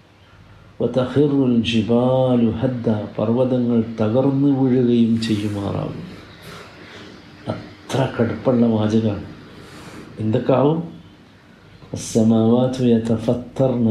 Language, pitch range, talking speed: Malayalam, 105-125 Hz, 65 wpm